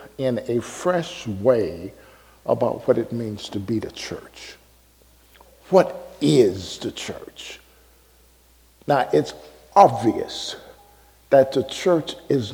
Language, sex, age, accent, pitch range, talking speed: English, male, 50-69, American, 115-180 Hz, 110 wpm